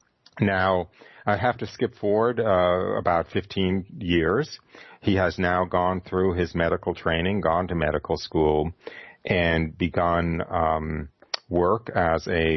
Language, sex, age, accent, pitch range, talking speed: English, male, 50-69, American, 80-90 Hz, 135 wpm